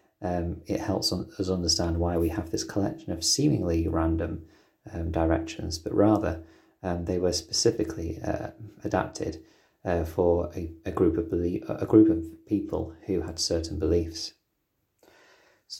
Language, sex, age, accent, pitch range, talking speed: English, male, 30-49, British, 80-100 Hz, 150 wpm